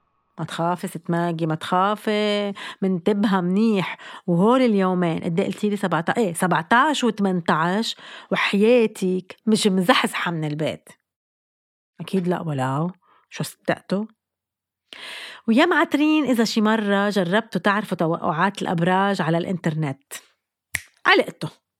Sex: female